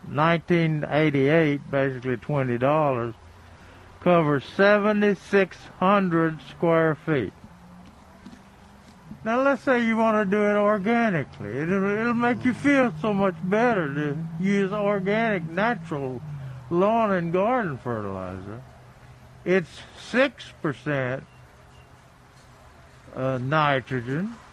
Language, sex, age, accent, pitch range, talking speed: English, male, 60-79, American, 120-180 Hz, 90 wpm